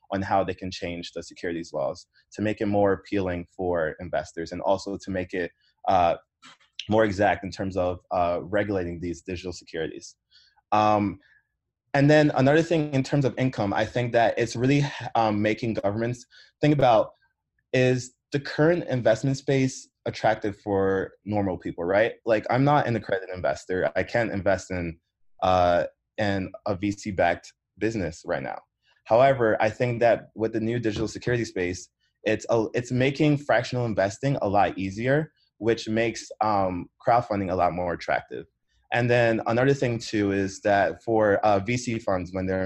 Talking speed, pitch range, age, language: 165 wpm, 95-120 Hz, 20-39, English